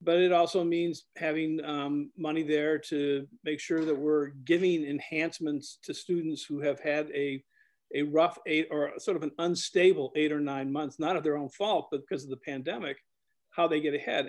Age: 50-69